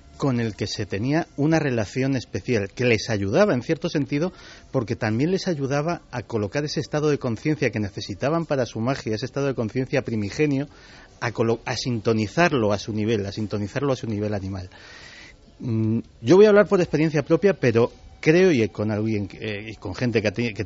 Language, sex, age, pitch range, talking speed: Spanish, male, 40-59, 105-155 Hz, 185 wpm